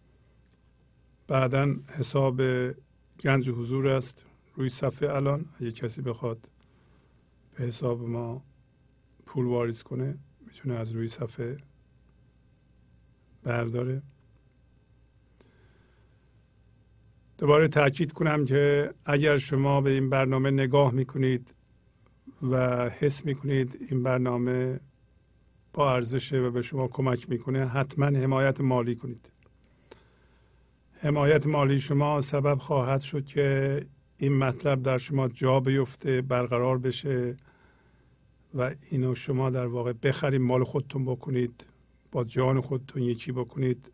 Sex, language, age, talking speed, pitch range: male, Persian, 50-69, 105 wpm, 125-140 Hz